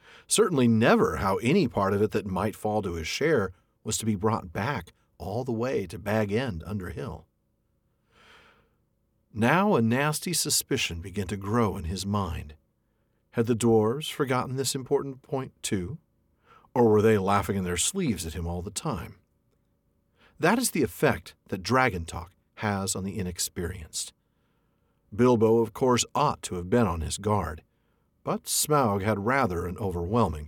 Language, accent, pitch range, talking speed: English, American, 95-135 Hz, 165 wpm